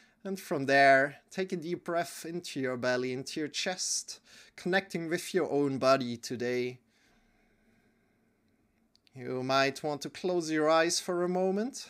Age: 30-49